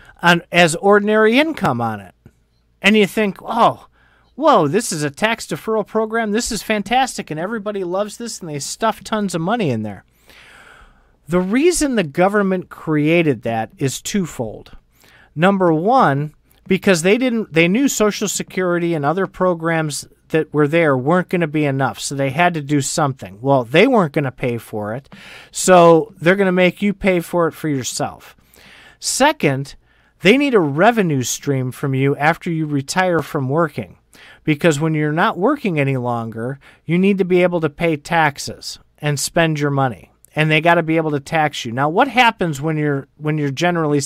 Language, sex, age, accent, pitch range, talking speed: English, male, 40-59, American, 140-195 Hz, 185 wpm